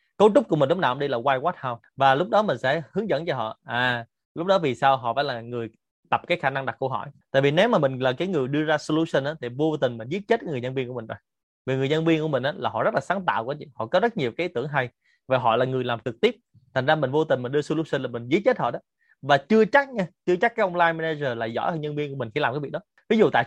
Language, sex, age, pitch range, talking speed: Vietnamese, male, 20-39, 130-170 Hz, 320 wpm